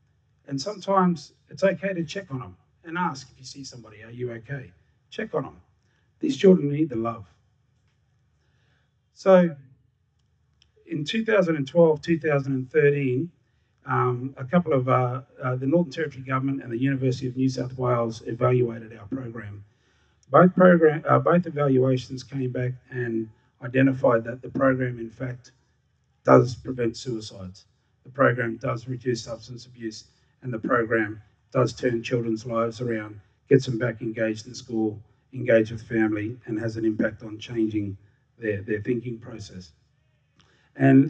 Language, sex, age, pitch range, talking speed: English, male, 30-49, 115-140 Hz, 145 wpm